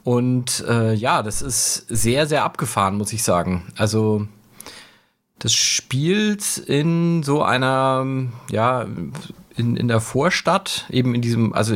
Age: 40-59